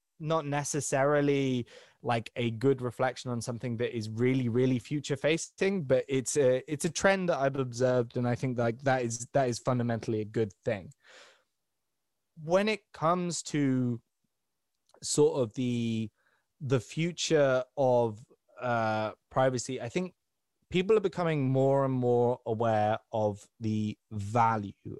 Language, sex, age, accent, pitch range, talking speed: English, male, 20-39, British, 115-135 Hz, 140 wpm